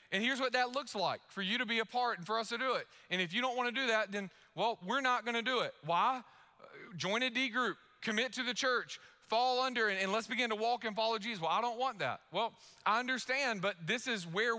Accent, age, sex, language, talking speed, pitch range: American, 30-49, male, English, 265 wpm, 190-250 Hz